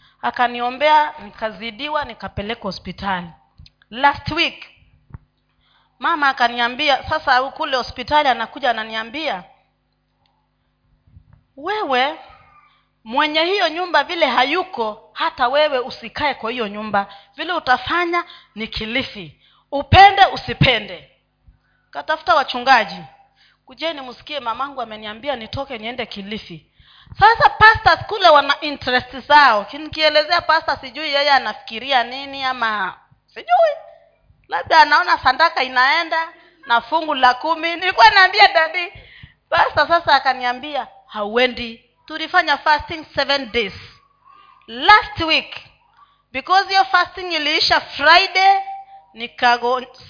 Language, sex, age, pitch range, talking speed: Swahili, female, 40-59, 240-330 Hz, 95 wpm